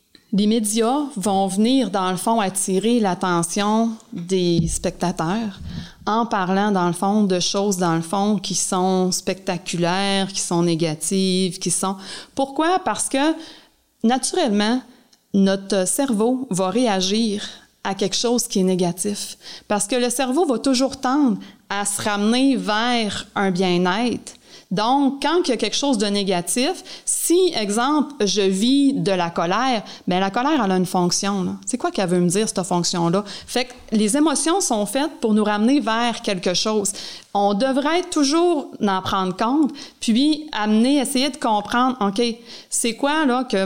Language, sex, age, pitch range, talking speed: French, female, 30-49, 190-255 Hz, 160 wpm